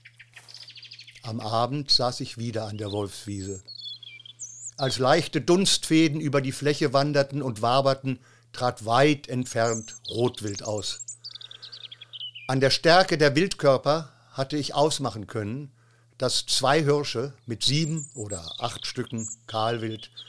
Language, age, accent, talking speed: German, 50-69, German, 120 wpm